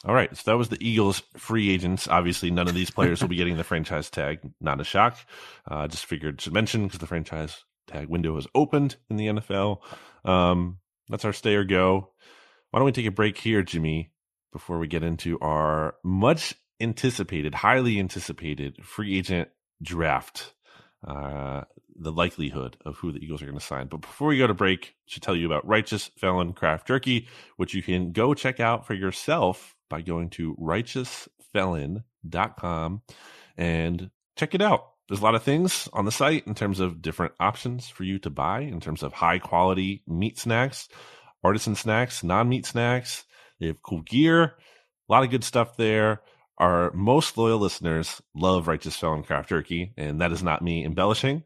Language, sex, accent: English, male, American